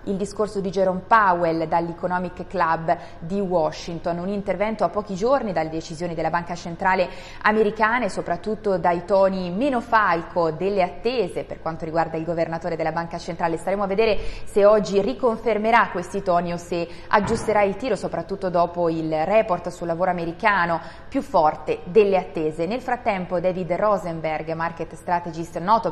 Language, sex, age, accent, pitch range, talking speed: Italian, female, 20-39, native, 170-200 Hz, 155 wpm